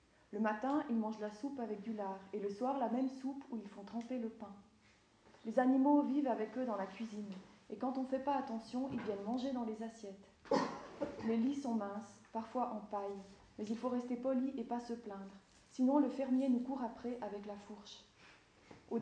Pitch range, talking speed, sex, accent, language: 200-245 Hz, 220 wpm, female, French, French